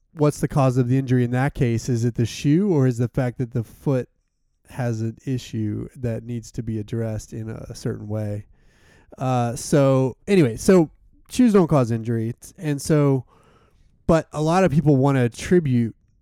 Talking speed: 185 wpm